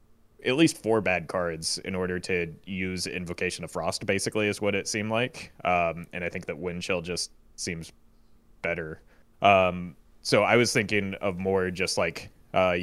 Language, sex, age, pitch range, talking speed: English, male, 20-39, 90-105 Hz, 175 wpm